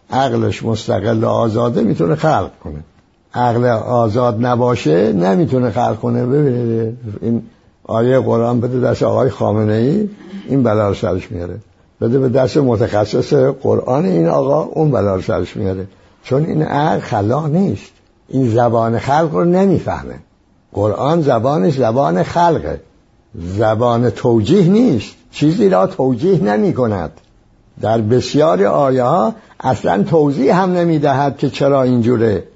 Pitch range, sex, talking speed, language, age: 110-150 Hz, male, 130 wpm, English, 60-79